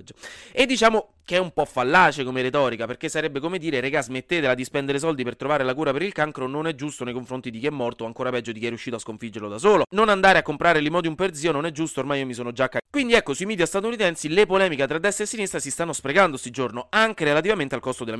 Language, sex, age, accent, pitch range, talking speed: Italian, male, 30-49, native, 125-190 Hz, 270 wpm